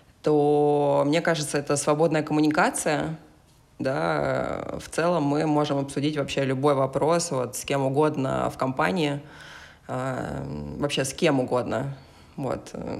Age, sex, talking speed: 20-39, female, 120 wpm